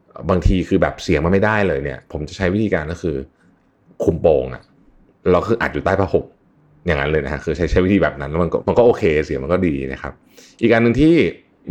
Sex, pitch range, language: male, 75-95 Hz, Thai